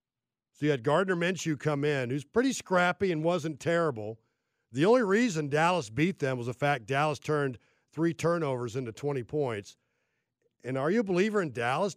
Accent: American